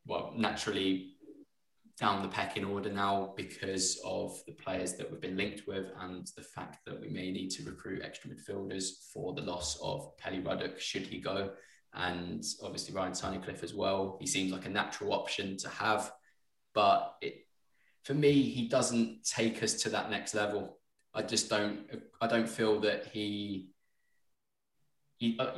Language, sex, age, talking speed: English, male, 20-39, 170 wpm